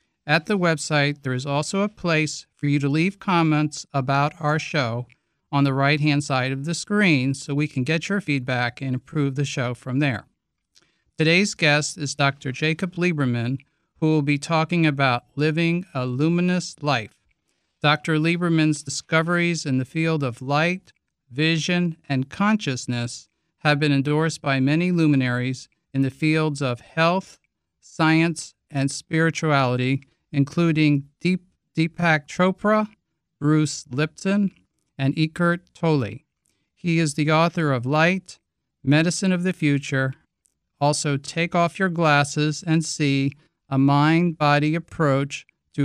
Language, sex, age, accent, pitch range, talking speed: English, male, 50-69, American, 140-165 Hz, 140 wpm